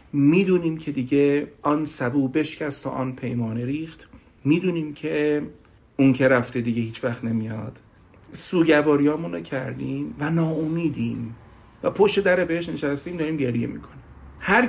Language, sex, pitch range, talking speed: Persian, male, 140-185 Hz, 130 wpm